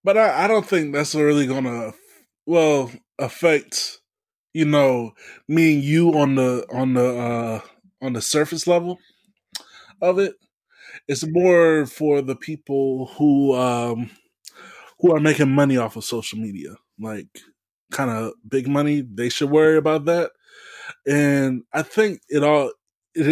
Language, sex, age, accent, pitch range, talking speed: English, male, 20-39, American, 125-160 Hz, 145 wpm